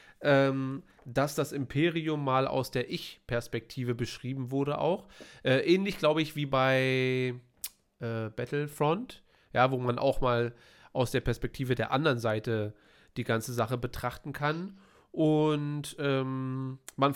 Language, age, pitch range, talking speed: German, 40-59, 120-145 Hz, 135 wpm